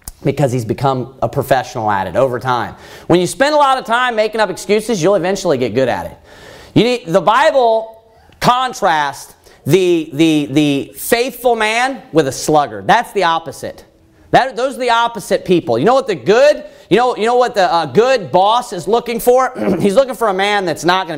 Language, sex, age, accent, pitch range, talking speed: English, male, 40-59, American, 155-230 Hz, 205 wpm